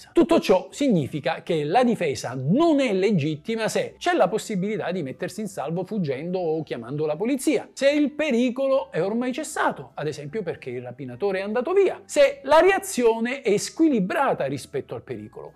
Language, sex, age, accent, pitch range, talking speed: Italian, male, 50-69, native, 150-250 Hz, 170 wpm